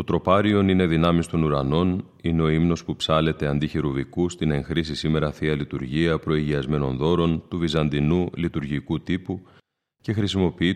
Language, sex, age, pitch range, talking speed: Greek, male, 30-49, 75-90 Hz, 140 wpm